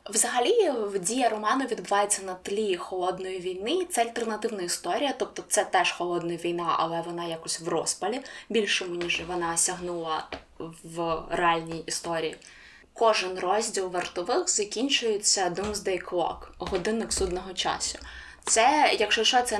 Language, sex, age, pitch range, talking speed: Ukrainian, female, 20-39, 170-230 Hz, 125 wpm